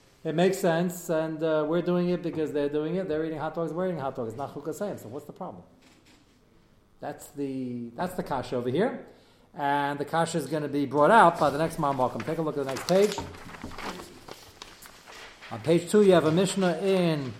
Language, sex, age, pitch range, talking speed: English, male, 40-59, 140-190 Hz, 215 wpm